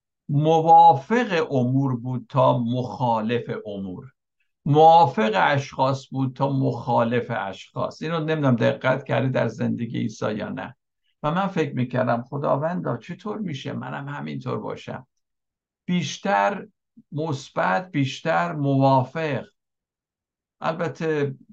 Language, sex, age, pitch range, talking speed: Persian, male, 60-79, 125-160 Hz, 105 wpm